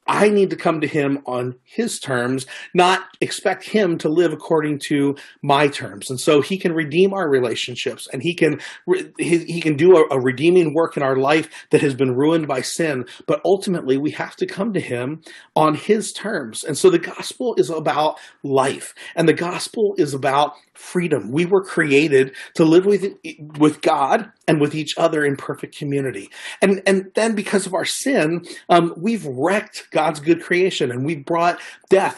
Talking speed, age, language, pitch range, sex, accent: 185 wpm, 40-59, English, 140-185 Hz, male, American